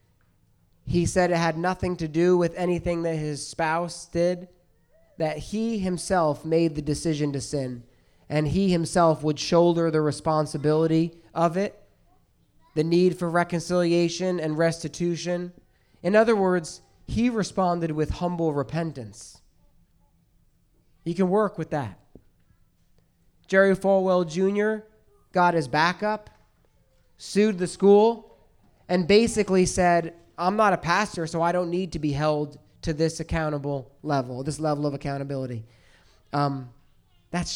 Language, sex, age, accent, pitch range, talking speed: English, male, 30-49, American, 140-175 Hz, 130 wpm